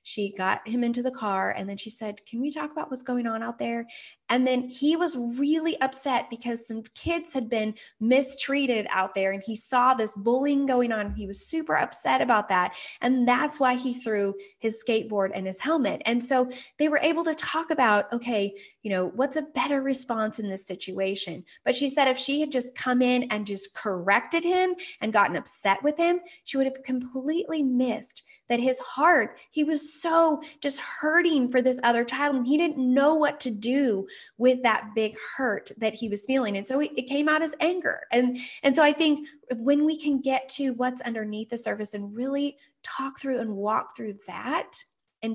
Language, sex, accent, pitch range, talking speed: English, female, American, 220-290 Hz, 205 wpm